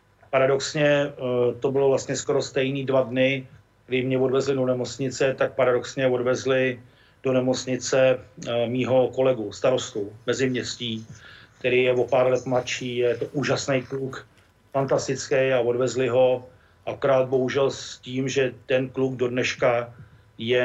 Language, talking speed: Czech, 135 wpm